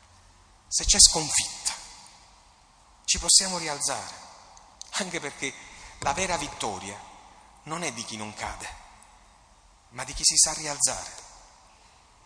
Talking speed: 115 wpm